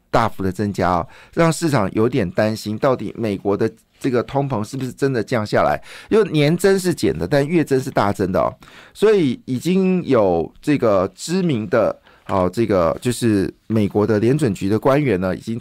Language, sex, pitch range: Chinese, male, 110-145 Hz